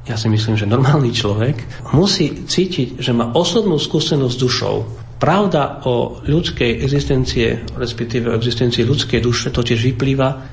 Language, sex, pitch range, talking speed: Slovak, male, 115-145 Hz, 140 wpm